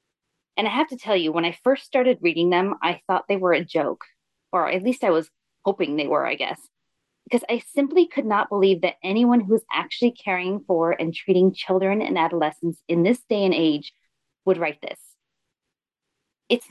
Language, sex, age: English, female, 30-49